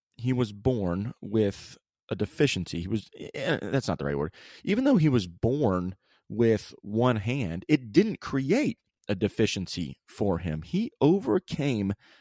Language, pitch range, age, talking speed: English, 95-125 Hz, 30-49, 145 wpm